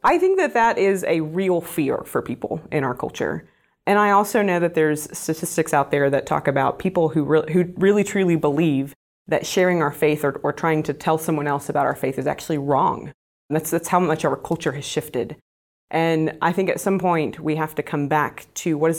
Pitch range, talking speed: 150-180 Hz, 230 wpm